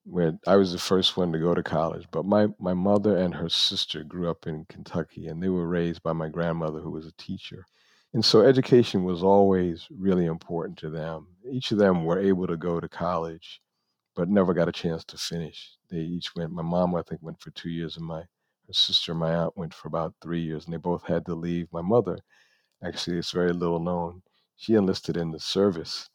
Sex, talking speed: male, 225 wpm